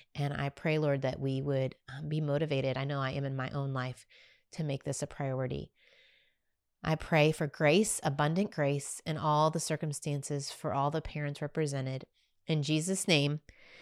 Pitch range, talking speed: 150-205 Hz, 175 wpm